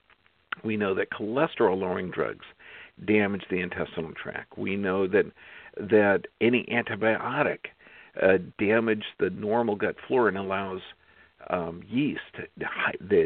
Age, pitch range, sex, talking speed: 50-69, 95-115 Hz, male, 120 wpm